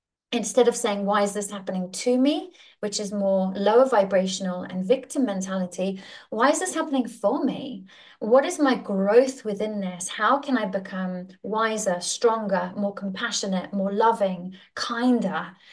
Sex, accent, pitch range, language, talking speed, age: female, British, 190-235 Hz, English, 155 wpm, 30-49